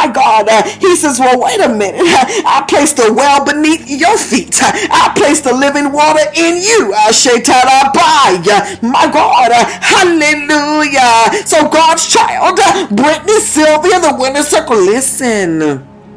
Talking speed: 140 wpm